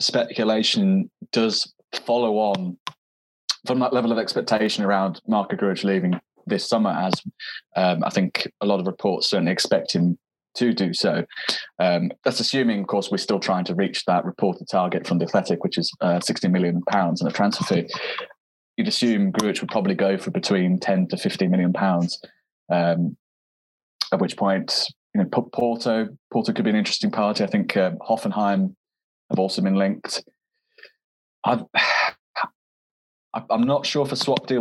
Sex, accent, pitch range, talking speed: male, British, 100-145 Hz, 165 wpm